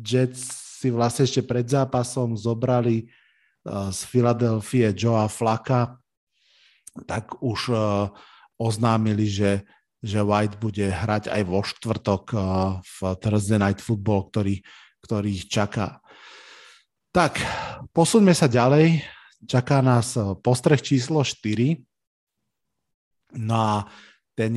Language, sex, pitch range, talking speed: Slovak, male, 105-130 Hz, 105 wpm